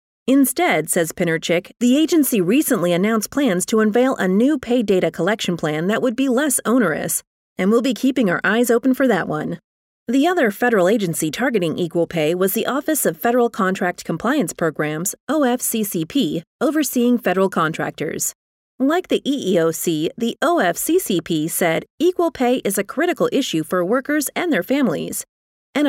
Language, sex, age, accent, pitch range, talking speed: English, female, 30-49, American, 175-265 Hz, 160 wpm